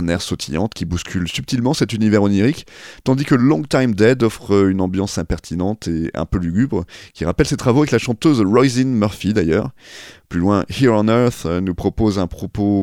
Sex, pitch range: male, 90-125 Hz